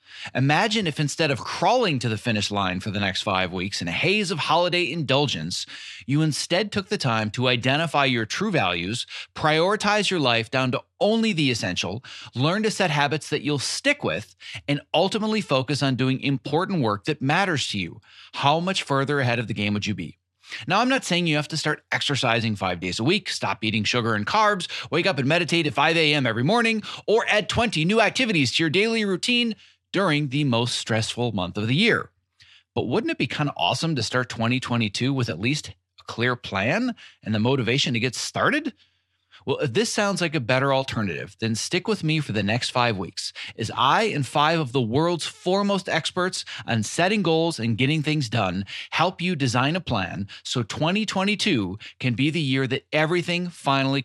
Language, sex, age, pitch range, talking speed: English, male, 30-49, 115-170 Hz, 200 wpm